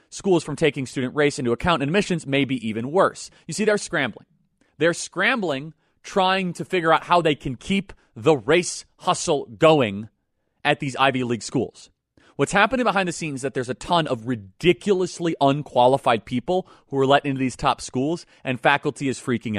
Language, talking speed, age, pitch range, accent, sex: English, 185 wpm, 30-49, 120-160 Hz, American, male